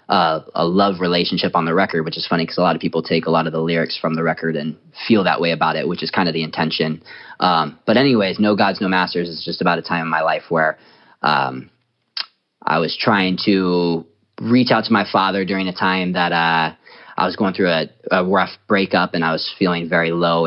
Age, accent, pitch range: 20-39, American, 85-100 Hz